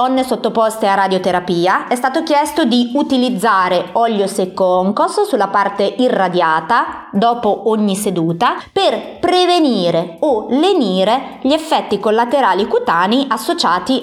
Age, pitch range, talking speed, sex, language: 30-49, 210-275 Hz, 110 wpm, female, Italian